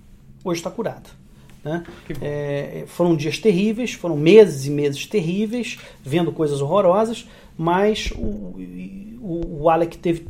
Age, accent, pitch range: 40-59, Brazilian, 145-195 Hz